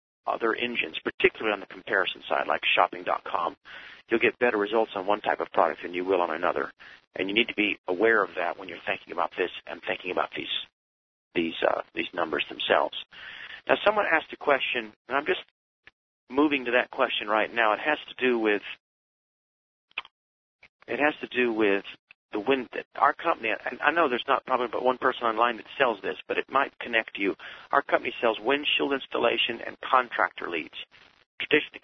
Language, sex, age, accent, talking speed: English, male, 40-59, American, 190 wpm